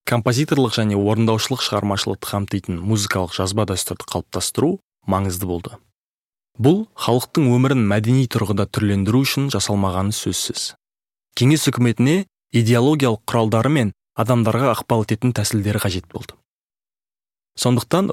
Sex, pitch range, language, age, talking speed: male, 105-135 Hz, Russian, 20-39, 115 wpm